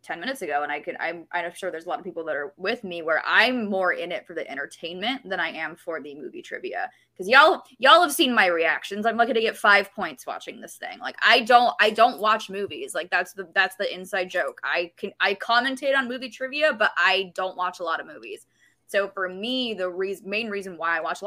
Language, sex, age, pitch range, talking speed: English, female, 20-39, 180-240 Hz, 250 wpm